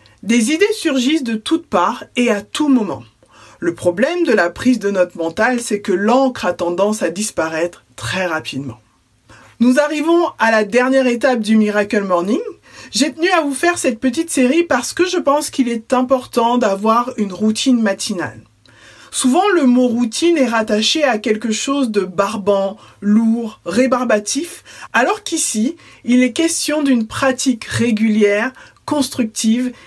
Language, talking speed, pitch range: French, 155 wpm, 210-275 Hz